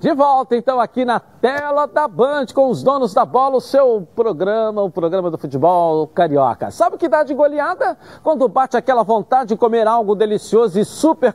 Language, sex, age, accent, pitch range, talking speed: Portuguese, male, 60-79, Brazilian, 175-255 Hz, 195 wpm